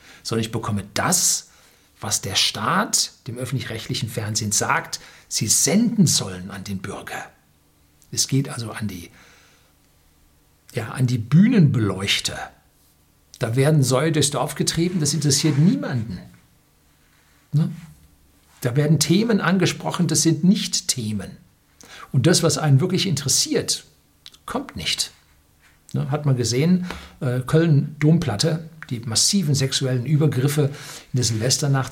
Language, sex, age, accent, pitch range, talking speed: German, male, 60-79, German, 120-160 Hz, 110 wpm